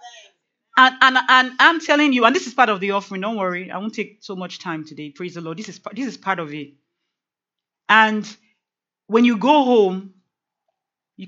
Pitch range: 155-200 Hz